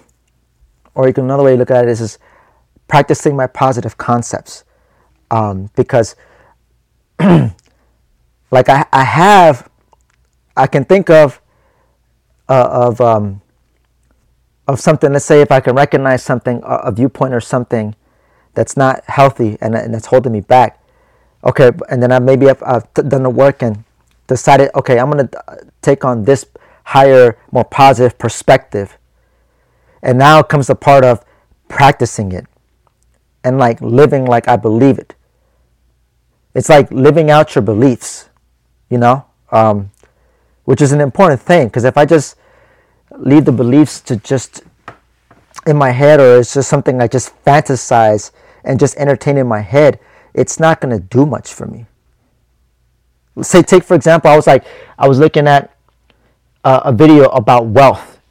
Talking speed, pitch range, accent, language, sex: 155 wpm, 110-140 Hz, American, English, male